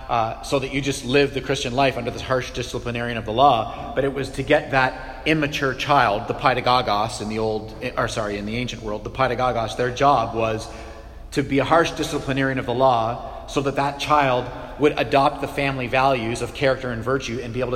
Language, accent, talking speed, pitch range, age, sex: English, American, 215 wpm, 120-140 Hz, 40-59, male